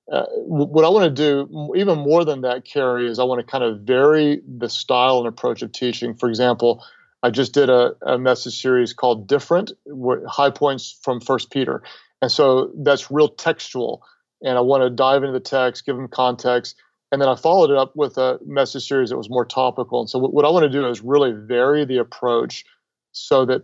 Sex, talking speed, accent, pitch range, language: male, 215 wpm, American, 125-140 Hz, English